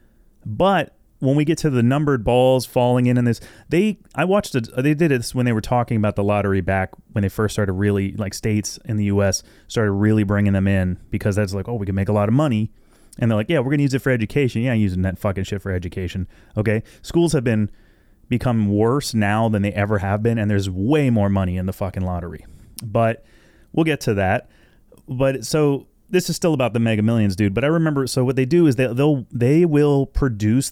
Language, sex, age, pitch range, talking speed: English, male, 30-49, 100-130 Hz, 235 wpm